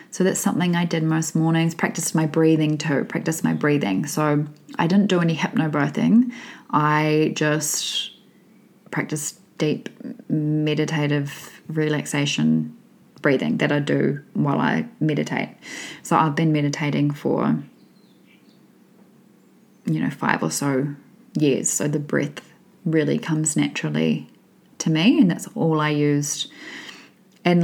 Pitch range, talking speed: 150-210 Hz, 125 wpm